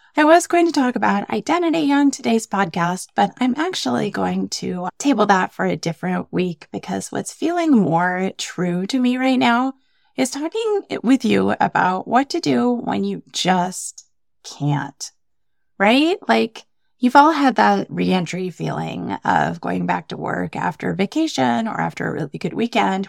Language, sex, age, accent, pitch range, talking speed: English, female, 30-49, American, 170-260 Hz, 165 wpm